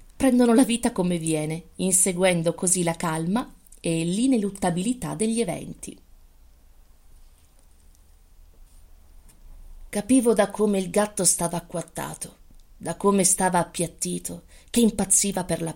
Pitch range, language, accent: 160-190 Hz, Italian, native